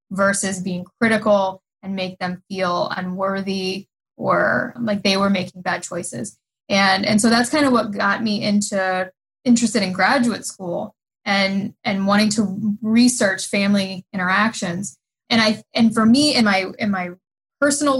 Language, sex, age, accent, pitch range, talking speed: English, female, 10-29, American, 190-225 Hz, 155 wpm